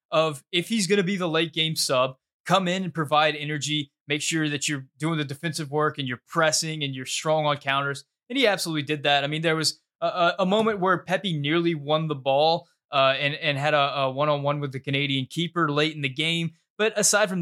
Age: 20-39